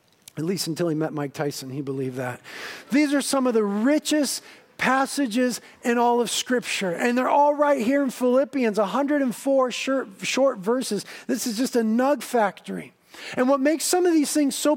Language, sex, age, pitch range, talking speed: English, male, 40-59, 220-275 Hz, 185 wpm